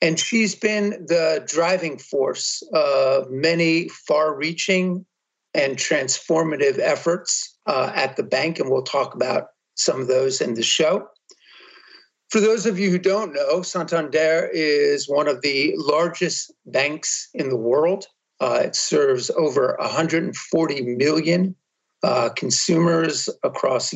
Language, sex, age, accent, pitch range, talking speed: English, male, 50-69, American, 145-190 Hz, 135 wpm